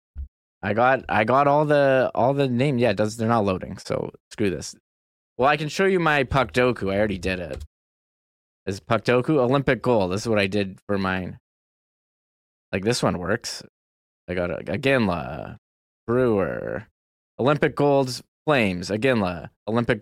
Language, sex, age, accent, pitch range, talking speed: English, male, 20-39, American, 90-125 Hz, 160 wpm